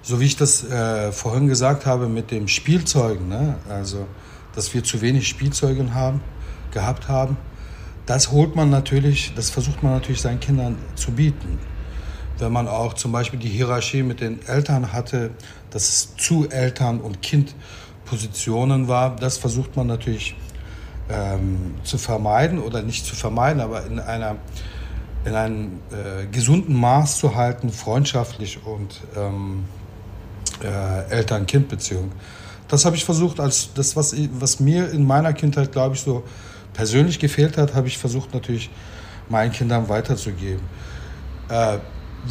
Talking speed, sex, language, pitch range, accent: 145 wpm, male, German, 105-135 Hz, German